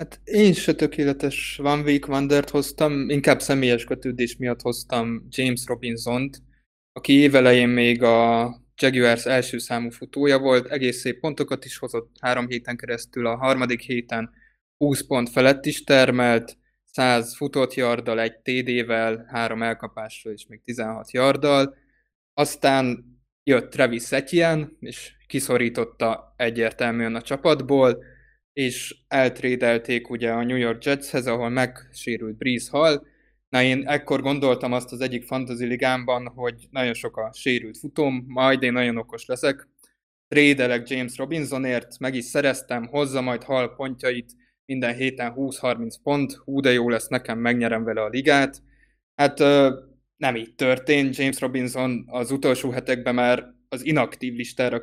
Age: 20-39